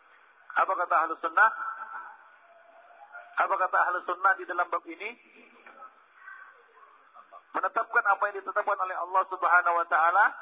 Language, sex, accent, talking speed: Dutch, male, Indonesian, 120 wpm